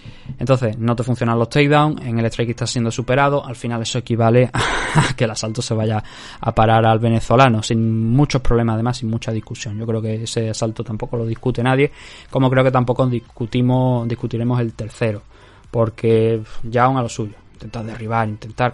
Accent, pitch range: Spanish, 115-130 Hz